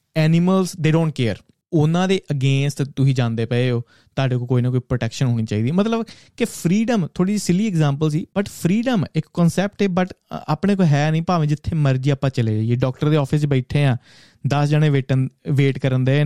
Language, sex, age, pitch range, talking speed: Punjabi, male, 30-49, 130-165 Hz, 190 wpm